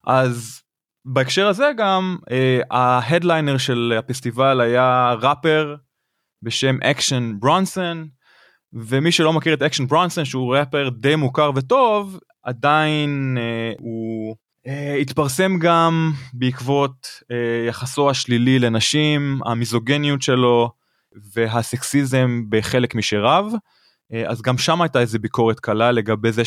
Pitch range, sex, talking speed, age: 115-145 Hz, male, 100 wpm, 20-39